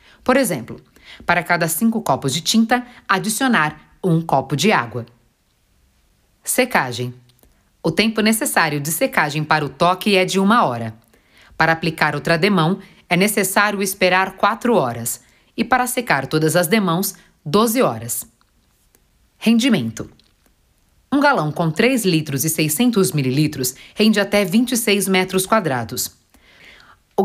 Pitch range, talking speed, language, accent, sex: 145-210 Hz, 130 wpm, Portuguese, Brazilian, female